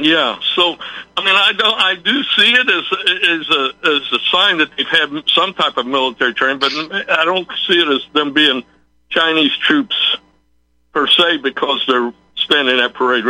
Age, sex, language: 60-79, male, English